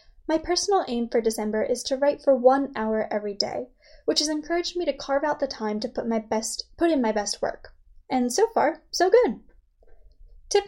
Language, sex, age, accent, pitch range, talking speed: English, female, 10-29, American, 230-320 Hz, 210 wpm